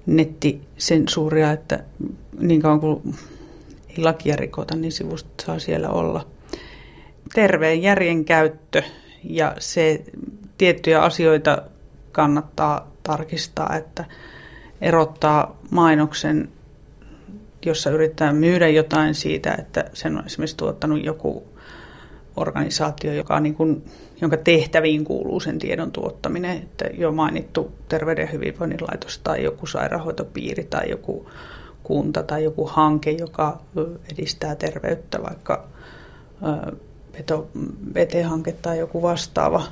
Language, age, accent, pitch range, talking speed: Finnish, 30-49, native, 155-175 Hz, 105 wpm